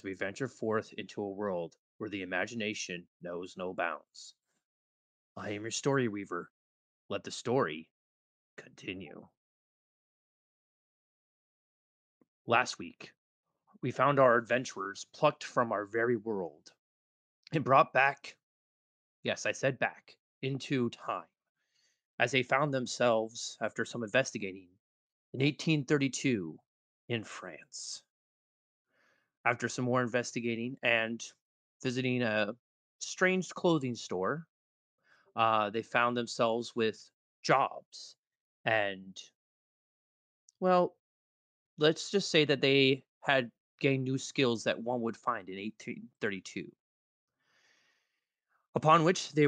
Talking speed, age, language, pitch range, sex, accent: 105 wpm, 30-49, English, 105-135 Hz, male, American